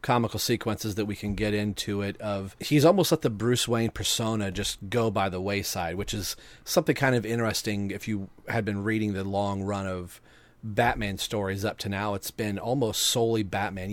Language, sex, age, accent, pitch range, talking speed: English, male, 40-59, American, 100-120 Hz, 200 wpm